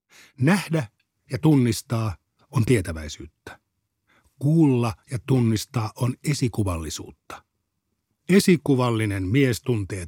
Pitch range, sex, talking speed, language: 100-135 Hz, male, 75 wpm, Finnish